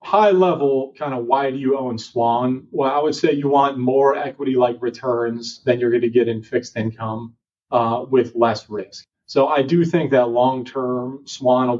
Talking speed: 205 wpm